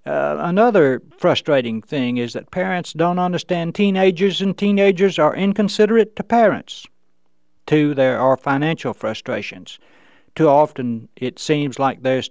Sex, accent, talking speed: male, American, 130 wpm